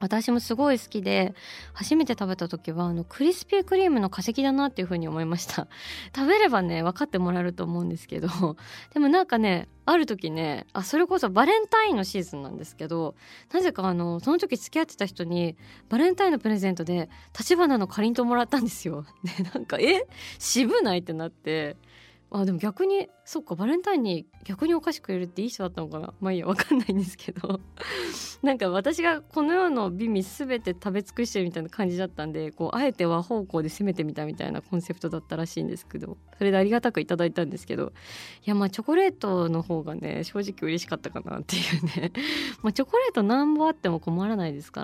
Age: 20-39